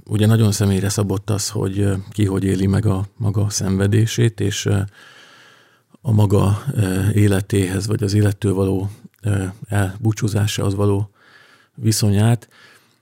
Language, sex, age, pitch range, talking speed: Hungarian, male, 50-69, 100-110 Hz, 110 wpm